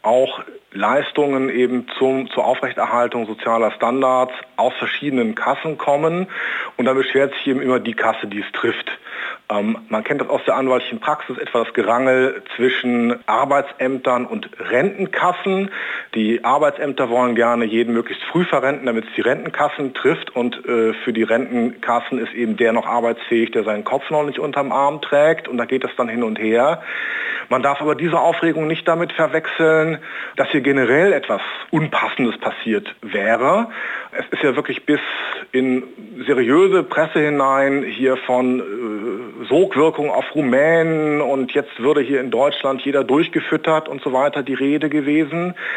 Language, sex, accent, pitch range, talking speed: German, male, German, 120-150 Hz, 155 wpm